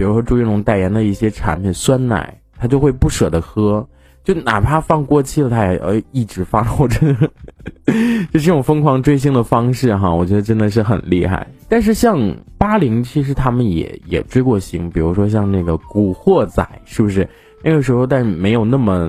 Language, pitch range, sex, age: Chinese, 95-130 Hz, male, 20-39